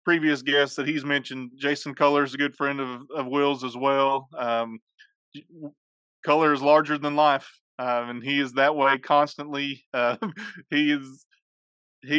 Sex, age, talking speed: male, 30-49, 160 wpm